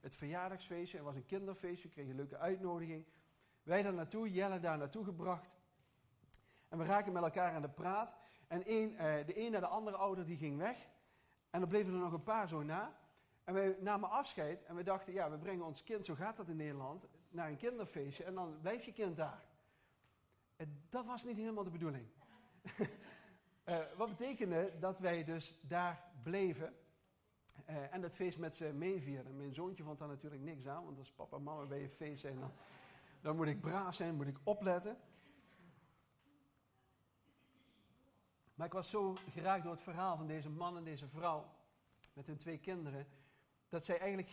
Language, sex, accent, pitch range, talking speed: Dutch, male, Dutch, 150-195 Hz, 190 wpm